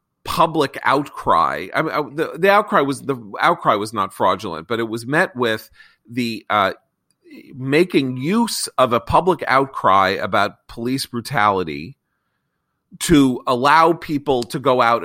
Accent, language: American, English